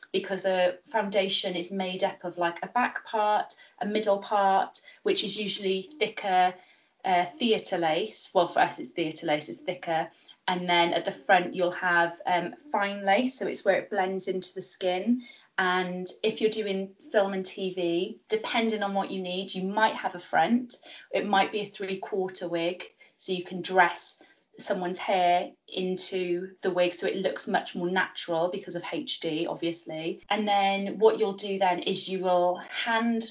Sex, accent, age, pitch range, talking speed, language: female, British, 20-39, 180-205 Hz, 180 wpm, English